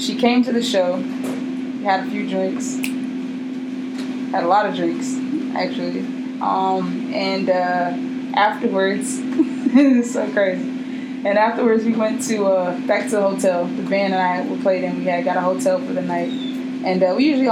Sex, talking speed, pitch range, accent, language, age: female, 175 wpm, 220-260 Hz, American, English, 20-39